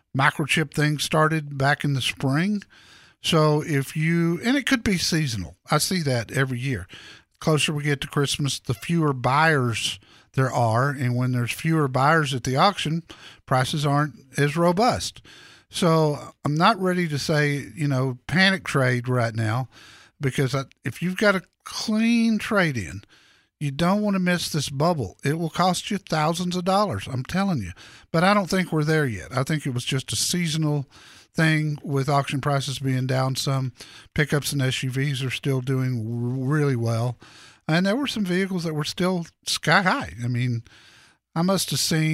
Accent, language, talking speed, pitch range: American, English, 175 wpm, 130-175 Hz